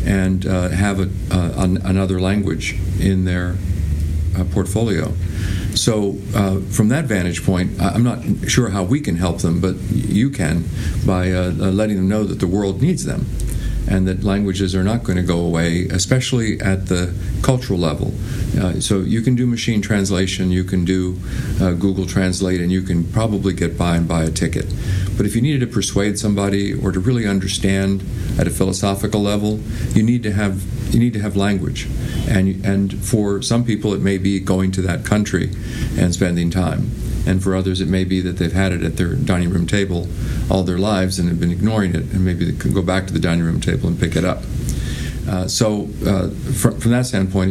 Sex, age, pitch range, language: male, 50-69, 90-105 Hz, English